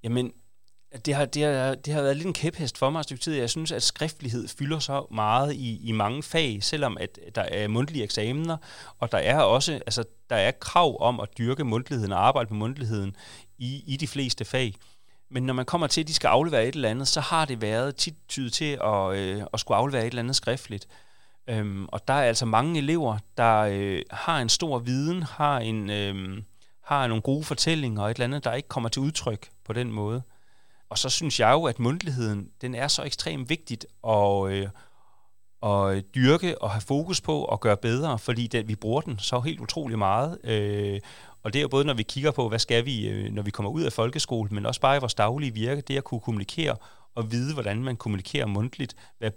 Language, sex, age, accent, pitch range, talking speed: Danish, male, 30-49, native, 105-140 Hz, 215 wpm